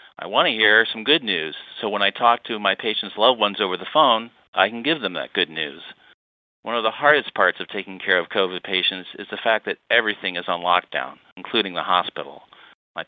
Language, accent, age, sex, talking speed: English, American, 40-59, male, 225 wpm